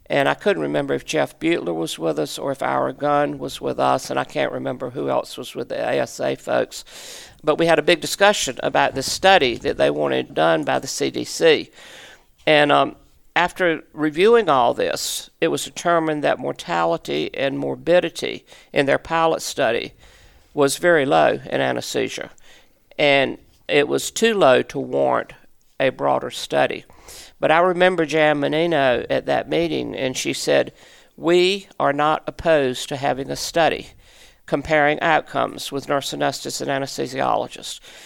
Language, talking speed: English, 160 wpm